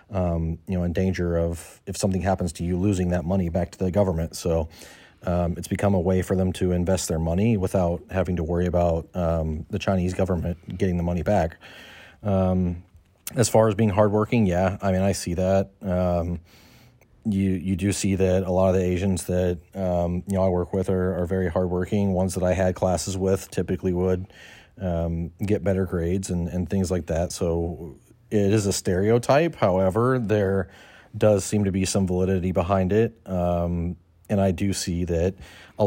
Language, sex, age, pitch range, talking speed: English, male, 30-49, 90-100 Hz, 195 wpm